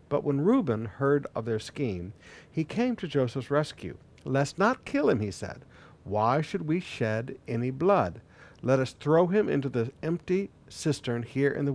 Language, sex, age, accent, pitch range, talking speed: English, male, 60-79, American, 120-175 Hz, 180 wpm